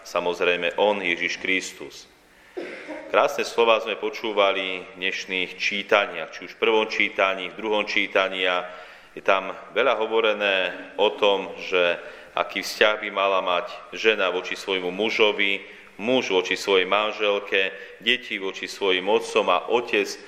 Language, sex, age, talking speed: Slovak, male, 30-49, 135 wpm